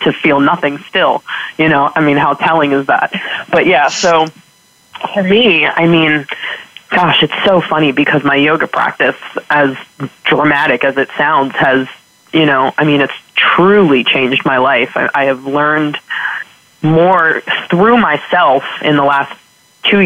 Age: 20-39